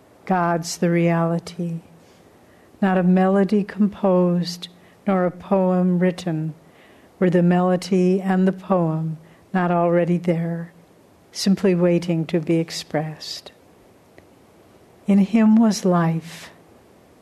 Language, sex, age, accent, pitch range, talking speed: English, female, 60-79, American, 170-190 Hz, 100 wpm